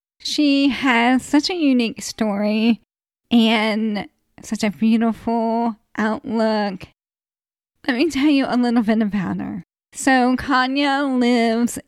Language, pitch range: English, 225-270 Hz